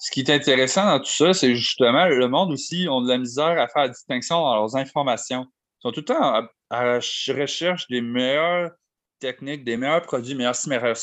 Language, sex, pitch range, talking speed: French, male, 120-150 Hz, 220 wpm